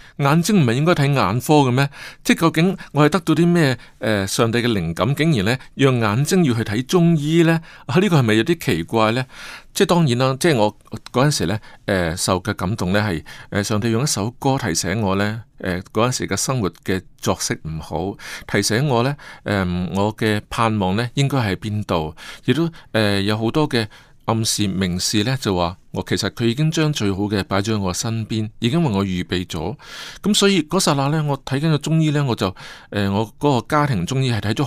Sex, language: male, Chinese